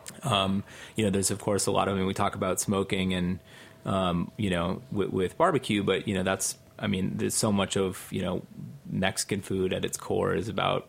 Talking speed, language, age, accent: 225 wpm, English, 30-49, American